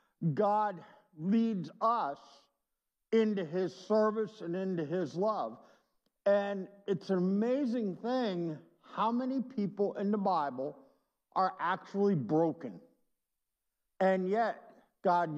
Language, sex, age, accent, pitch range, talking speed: English, male, 60-79, American, 170-225 Hz, 105 wpm